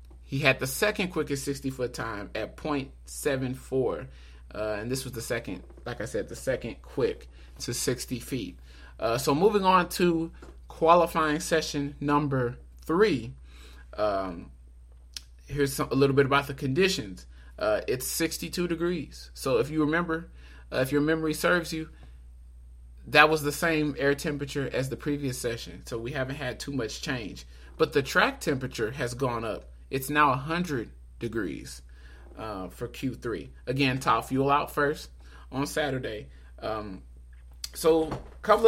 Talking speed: 150 wpm